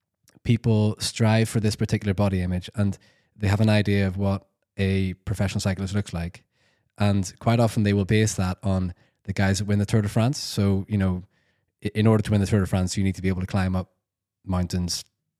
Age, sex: 20-39, male